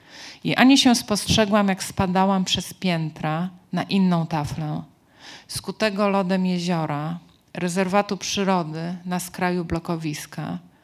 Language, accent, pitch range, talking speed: Polish, native, 165-195 Hz, 105 wpm